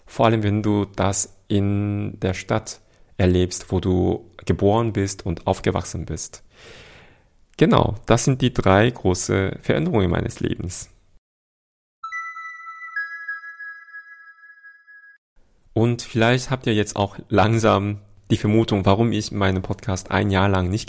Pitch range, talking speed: 95-115 Hz, 120 wpm